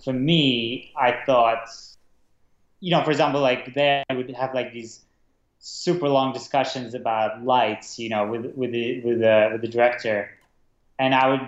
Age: 20-39